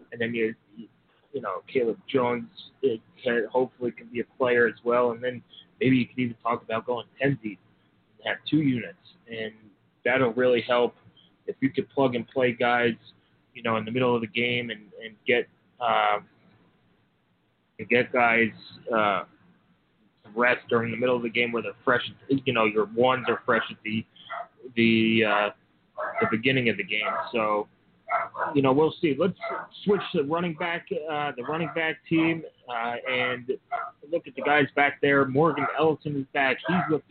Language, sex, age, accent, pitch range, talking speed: English, male, 20-39, American, 115-145 Hz, 185 wpm